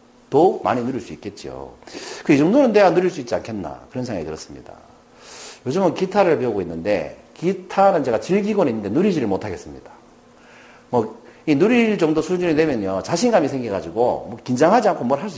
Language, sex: Korean, male